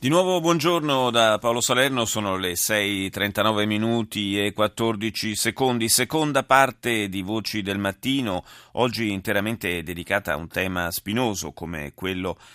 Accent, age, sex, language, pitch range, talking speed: native, 30-49, male, Italian, 90-115 Hz, 135 wpm